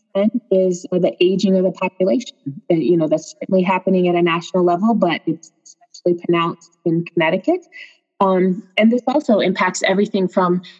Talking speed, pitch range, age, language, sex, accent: 155 wpm, 170-205 Hz, 20-39, English, female, American